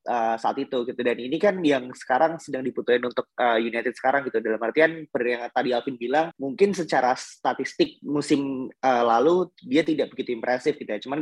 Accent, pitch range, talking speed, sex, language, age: native, 125-155 Hz, 195 wpm, male, Indonesian, 20-39